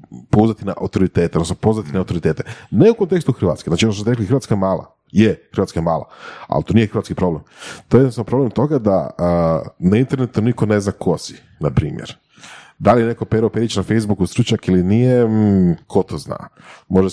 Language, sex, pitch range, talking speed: Croatian, male, 85-110 Hz, 195 wpm